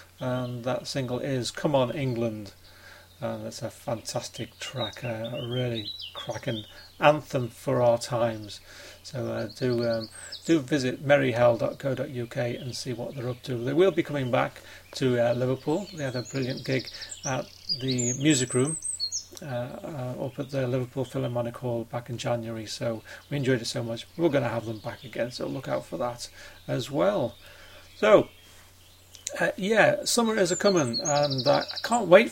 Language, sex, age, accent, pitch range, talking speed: English, male, 40-59, British, 115-140 Hz, 170 wpm